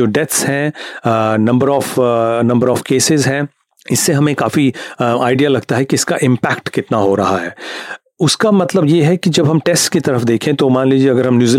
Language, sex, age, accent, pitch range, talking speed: Hindi, male, 40-59, native, 125-160 Hz, 55 wpm